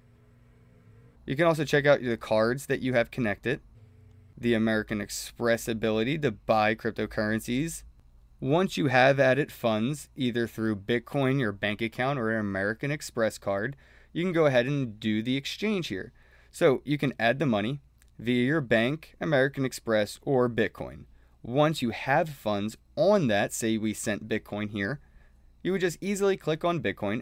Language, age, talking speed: English, 20-39, 165 wpm